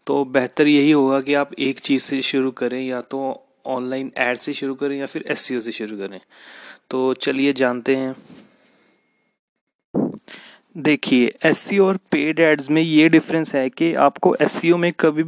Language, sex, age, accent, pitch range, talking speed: Hindi, male, 20-39, native, 135-160 Hz, 190 wpm